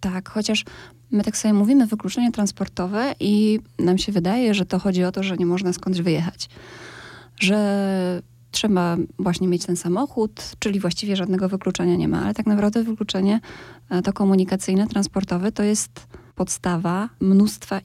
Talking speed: 150 wpm